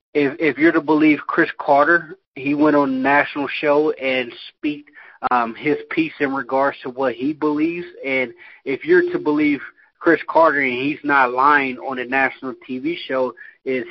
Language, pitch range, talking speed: English, 125-145 Hz, 175 wpm